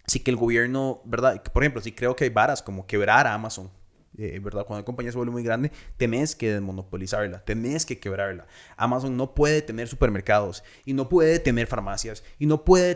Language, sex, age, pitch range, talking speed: Spanish, male, 20-39, 115-160 Hz, 200 wpm